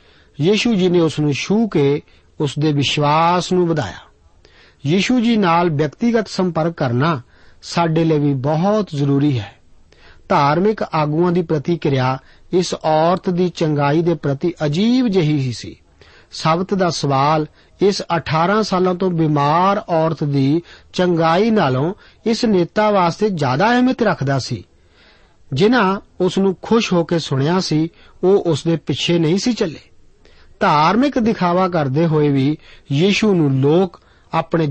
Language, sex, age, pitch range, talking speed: Punjabi, male, 50-69, 145-190 Hz, 95 wpm